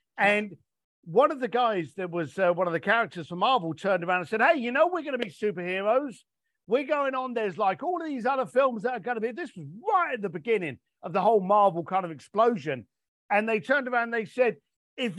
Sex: male